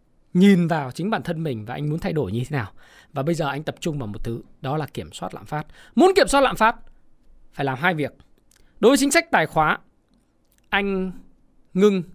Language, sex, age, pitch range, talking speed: Vietnamese, male, 20-39, 150-220 Hz, 225 wpm